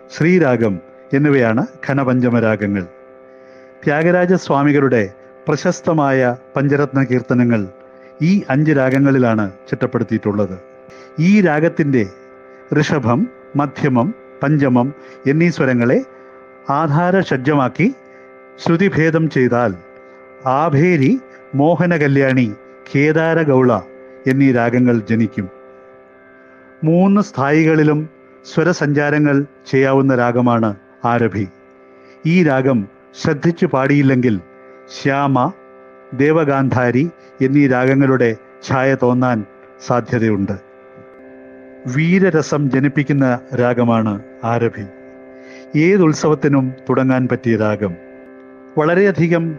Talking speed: 65 wpm